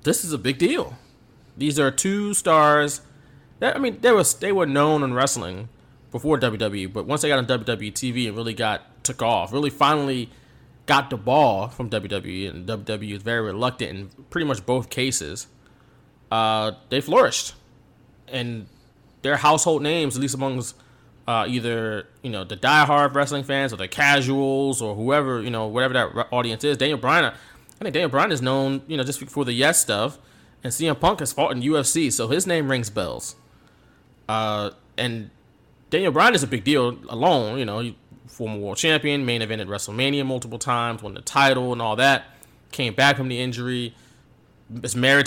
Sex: male